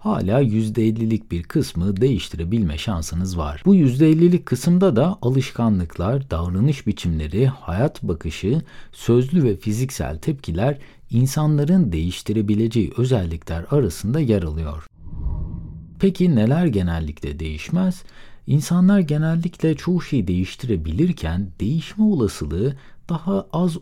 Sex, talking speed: male, 100 wpm